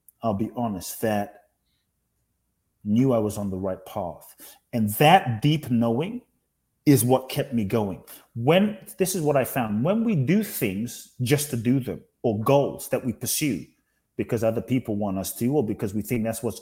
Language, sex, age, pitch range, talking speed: English, male, 30-49, 110-145 Hz, 185 wpm